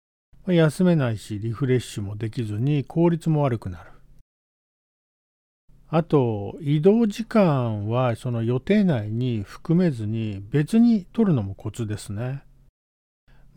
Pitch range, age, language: 110-175 Hz, 50-69, Japanese